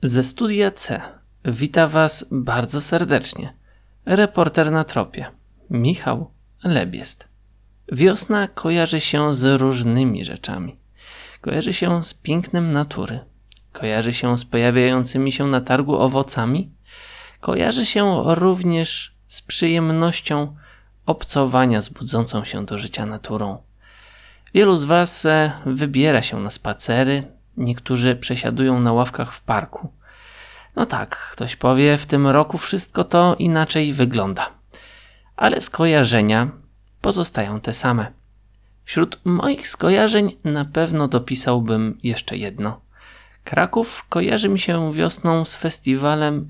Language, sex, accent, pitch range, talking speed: Polish, male, native, 120-165 Hz, 110 wpm